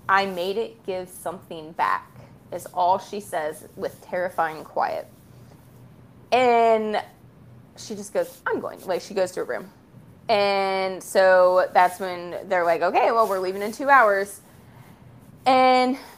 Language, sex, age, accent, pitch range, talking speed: English, female, 20-39, American, 185-245 Hz, 145 wpm